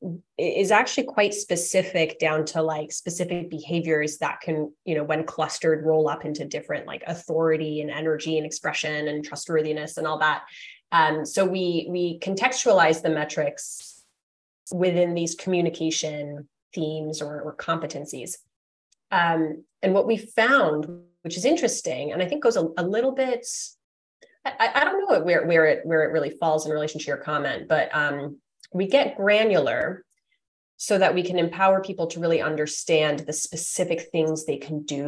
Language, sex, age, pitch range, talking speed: English, female, 20-39, 150-180 Hz, 165 wpm